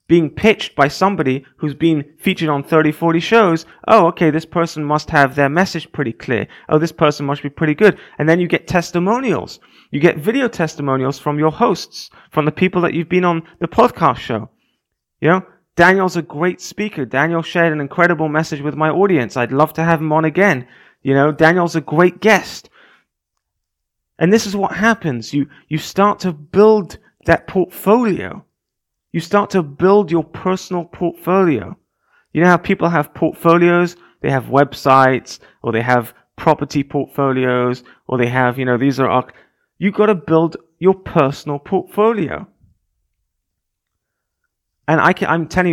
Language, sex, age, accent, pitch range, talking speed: English, male, 30-49, British, 140-180 Hz, 165 wpm